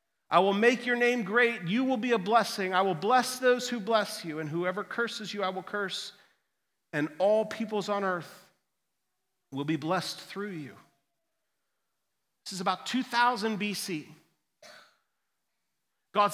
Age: 40-59